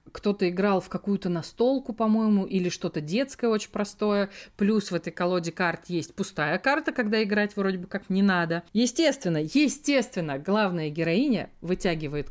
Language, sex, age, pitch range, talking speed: Russian, female, 30-49, 180-255 Hz, 150 wpm